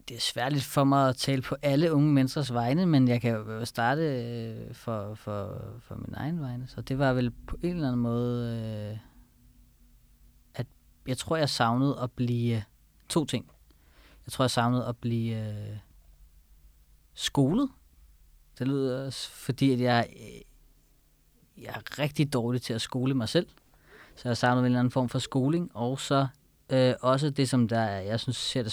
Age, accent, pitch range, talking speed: 30-49, native, 110-130 Hz, 170 wpm